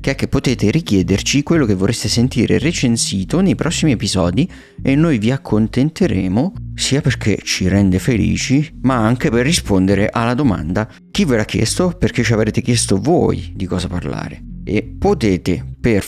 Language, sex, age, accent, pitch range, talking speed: Italian, male, 30-49, native, 95-115 Hz, 160 wpm